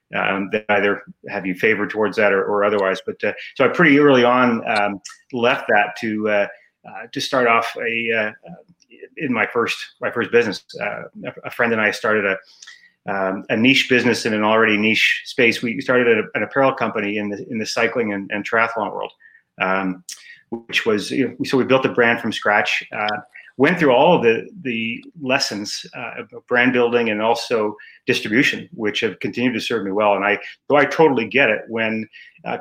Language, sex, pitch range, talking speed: English, male, 105-125 Hz, 200 wpm